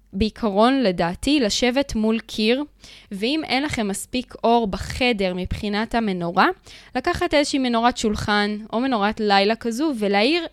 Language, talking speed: Hebrew, 125 wpm